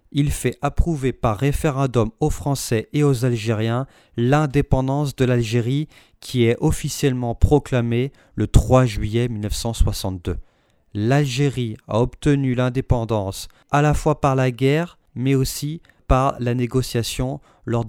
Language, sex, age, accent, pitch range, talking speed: French, male, 40-59, French, 110-140 Hz, 125 wpm